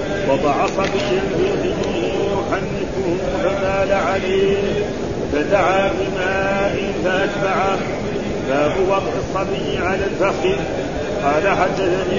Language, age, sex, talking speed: Arabic, 50-69, male, 85 wpm